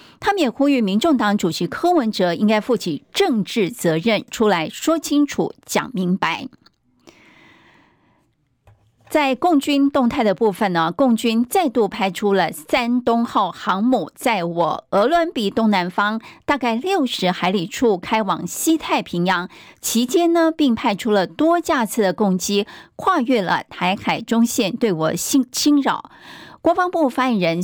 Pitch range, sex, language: 190-270 Hz, female, Chinese